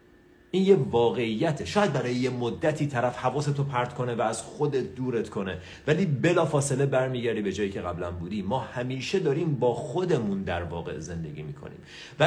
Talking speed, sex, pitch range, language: 170 wpm, male, 115-165 Hz, Persian